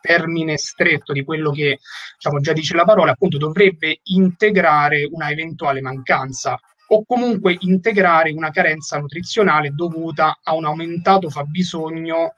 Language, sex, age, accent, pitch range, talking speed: Italian, male, 30-49, native, 150-185 Hz, 130 wpm